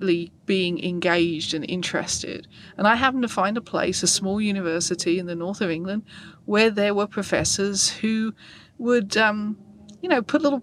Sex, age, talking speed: female, 30-49, 170 wpm